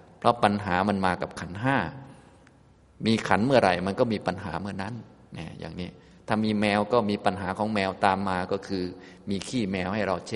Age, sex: 20-39, male